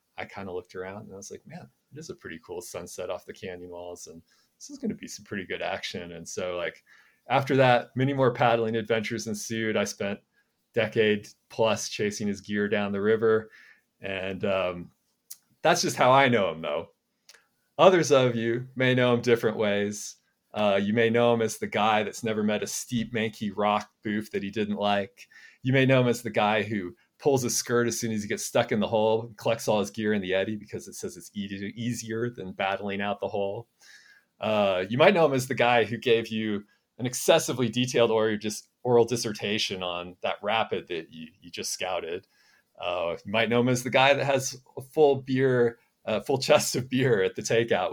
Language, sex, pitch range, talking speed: English, male, 105-125 Hz, 215 wpm